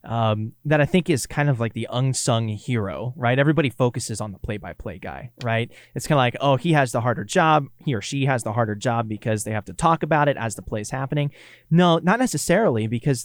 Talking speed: 235 wpm